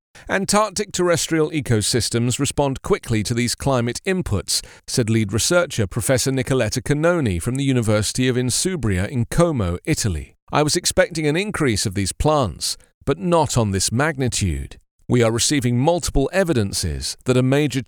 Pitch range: 105-160 Hz